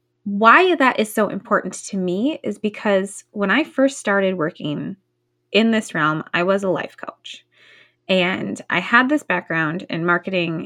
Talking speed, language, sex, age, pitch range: 165 wpm, English, female, 20-39, 185-230 Hz